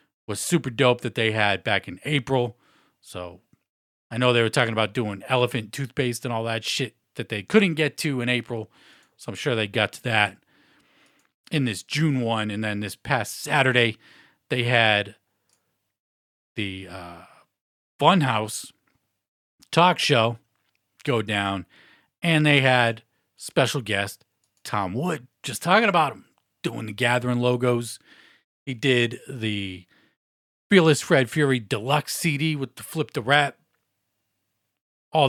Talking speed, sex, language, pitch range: 145 wpm, male, English, 110-145 Hz